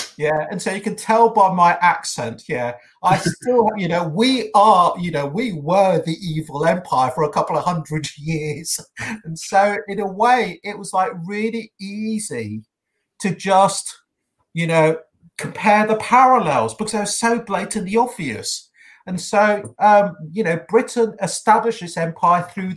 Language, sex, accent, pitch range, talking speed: English, male, British, 160-210 Hz, 160 wpm